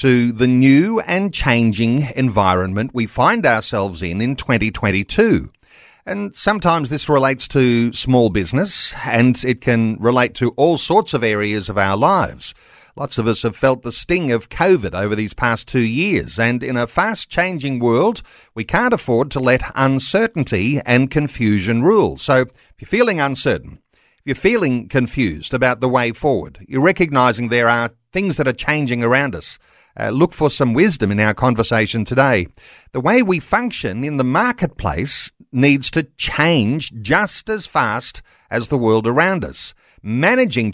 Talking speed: 160 wpm